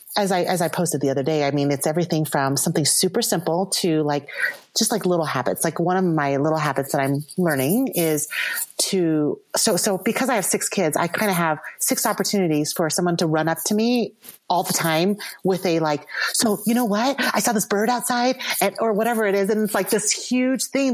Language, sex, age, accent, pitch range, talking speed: English, female, 30-49, American, 165-215 Hz, 225 wpm